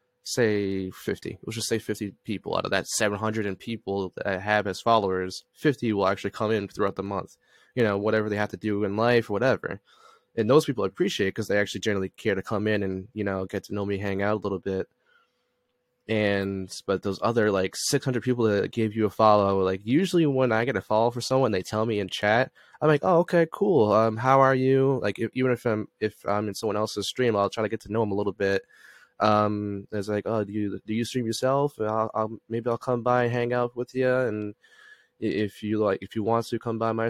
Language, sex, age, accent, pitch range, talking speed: English, male, 20-39, American, 100-115 Hz, 240 wpm